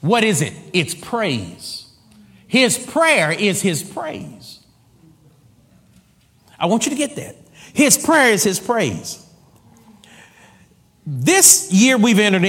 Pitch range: 125-190 Hz